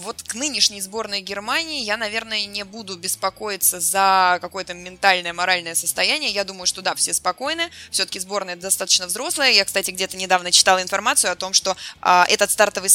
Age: 20-39